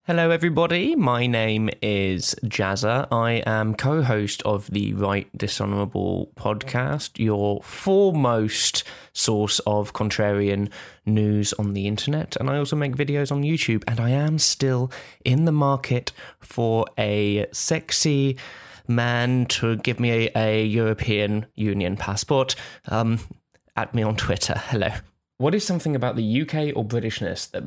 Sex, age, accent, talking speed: male, 20-39, British, 140 wpm